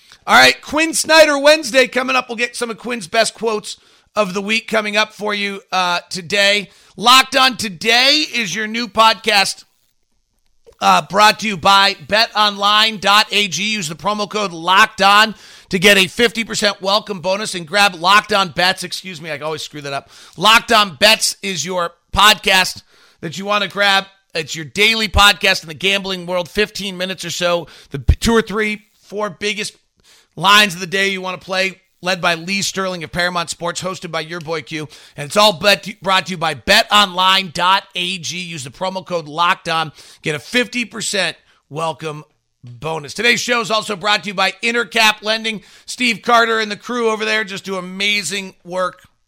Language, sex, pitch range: English, male, 175-215 Hz